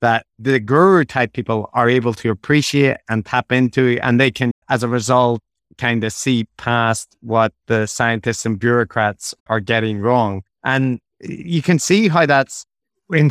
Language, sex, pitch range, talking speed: English, male, 115-130 Hz, 160 wpm